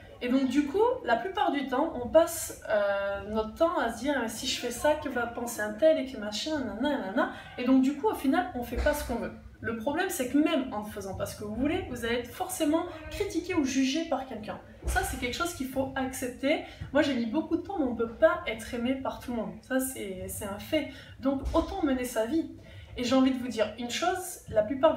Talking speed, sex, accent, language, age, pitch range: 260 wpm, female, French, French, 20-39, 240-315 Hz